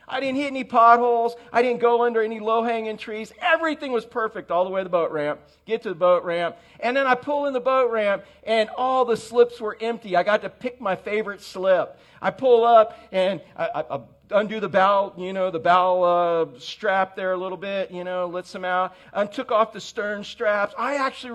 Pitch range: 185-245 Hz